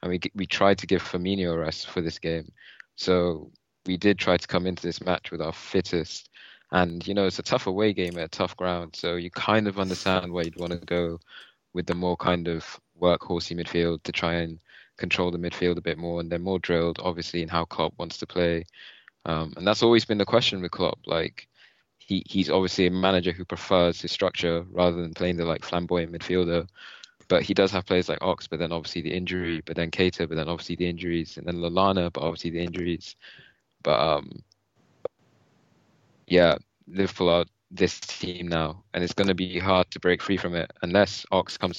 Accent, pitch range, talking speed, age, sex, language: British, 85-95 Hz, 215 wpm, 20-39, male, English